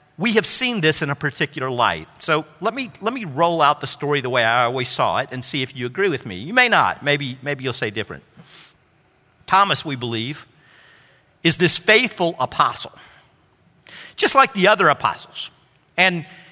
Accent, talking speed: American, 185 wpm